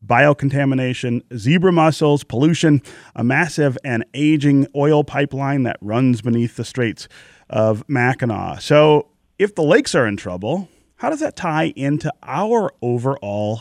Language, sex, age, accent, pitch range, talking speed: English, male, 30-49, American, 110-145 Hz, 135 wpm